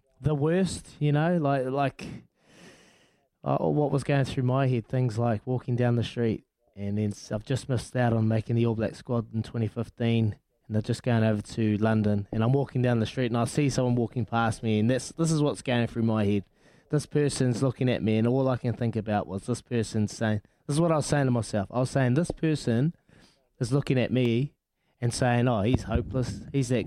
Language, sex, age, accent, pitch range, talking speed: English, male, 20-39, Australian, 115-140 Hz, 225 wpm